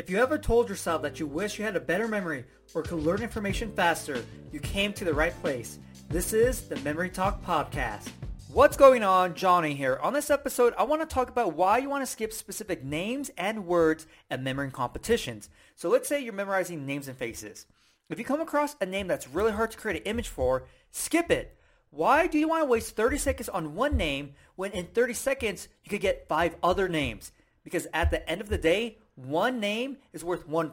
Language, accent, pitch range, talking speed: English, American, 160-240 Hz, 220 wpm